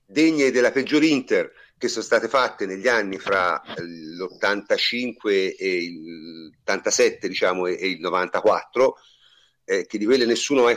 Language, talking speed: Italian, 140 wpm